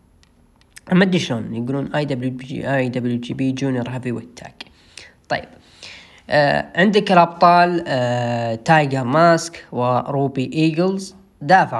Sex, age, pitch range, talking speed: female, 10-29, 120-155 Hz, 90 wpm